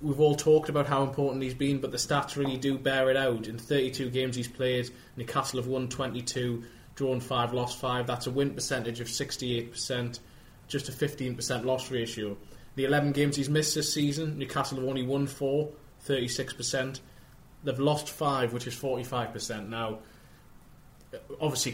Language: English